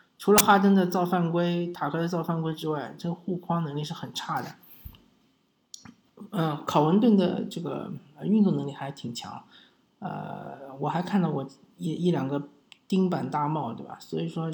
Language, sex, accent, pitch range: Chinese, male, native, 150-190 Hz